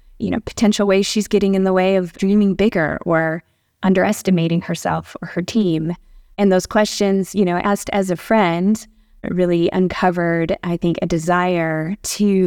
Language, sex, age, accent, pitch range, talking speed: English, female, 20-39, American, 170-200 Hz, 165 wpm